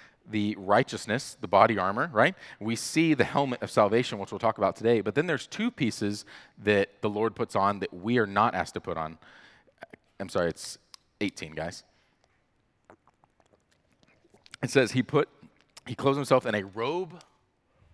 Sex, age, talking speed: male, 30-49, 165 wpm